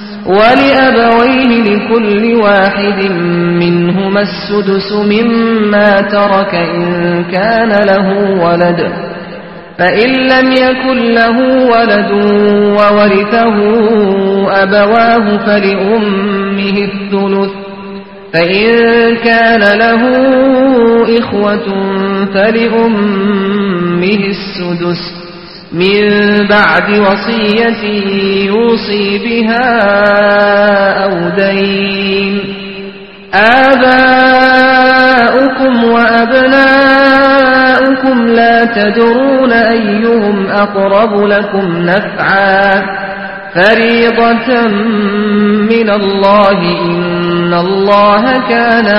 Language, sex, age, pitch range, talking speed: Malayalam, male, 30-49, 195-230 Hz, 55 wpm